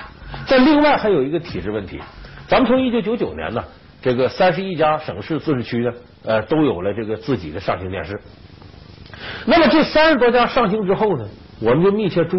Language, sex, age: Chinese, male, 50-69